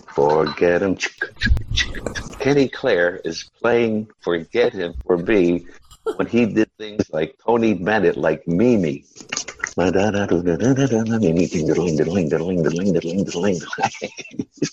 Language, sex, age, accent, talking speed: English, male, 60-79, American, 80 wpm